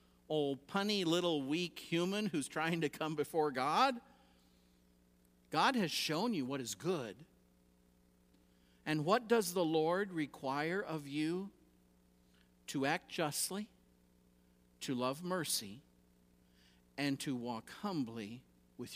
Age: 50-69